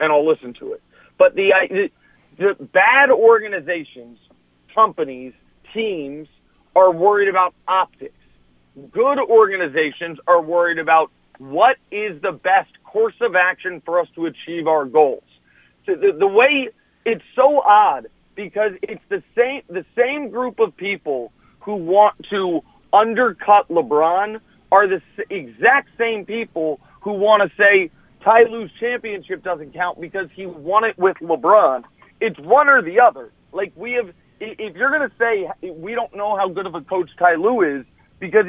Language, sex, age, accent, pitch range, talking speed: English, male, 40-59, American, 175-230 Hz, 155 wpm